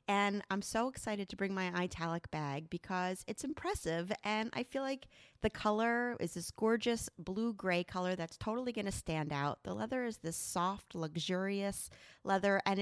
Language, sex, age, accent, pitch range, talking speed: English, female, 30-49, American, 180-235 Hz, 175 wpm